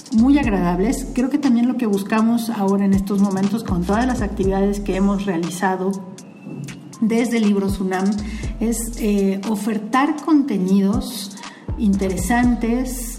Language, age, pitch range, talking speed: Spanish, 50-69, 195-230 Hz, 125 wpm